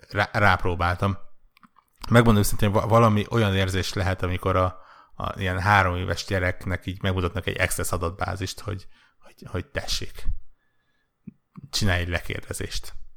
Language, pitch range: Hungarian, 90-105 Hz